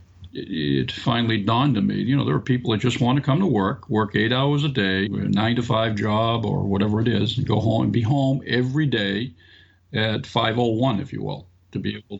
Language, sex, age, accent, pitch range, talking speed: English, male, 50-69, American, 100-125 Hz, 235 wpm